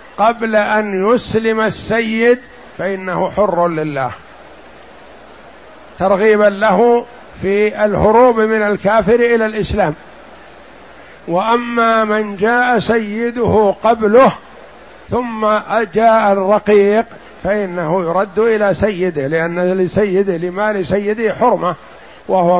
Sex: male